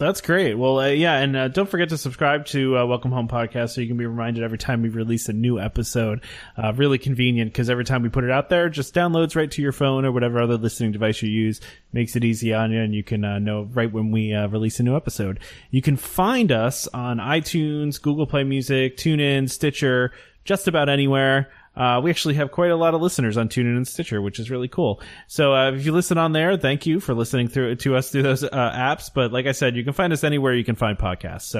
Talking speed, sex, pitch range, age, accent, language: 255 wpm, male, 115-140 Hz, 20-39, American, English